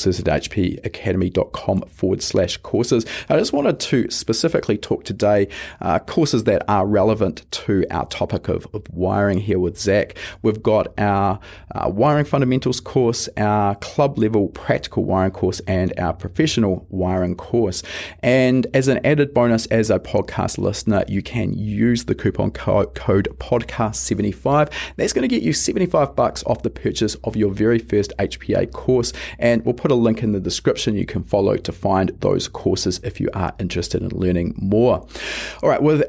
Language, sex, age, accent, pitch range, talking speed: English, male, 30-49, Australian, 100-125 Hz, 170 wpm